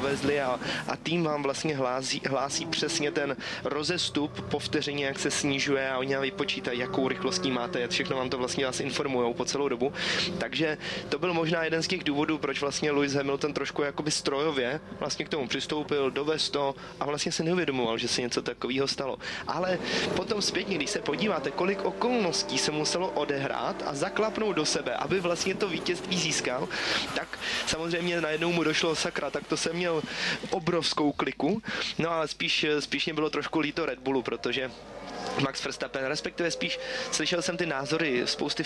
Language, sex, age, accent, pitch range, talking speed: Czech, male, 20-39, native, 135-165 Hz, 175 wpm